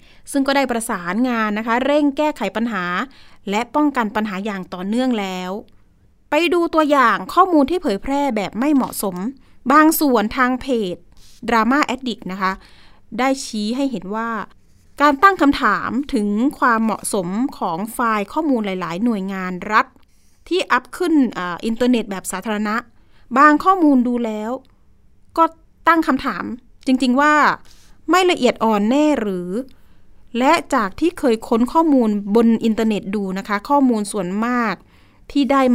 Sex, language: female, Thai